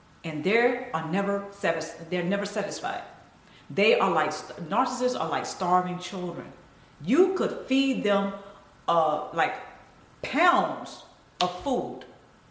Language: English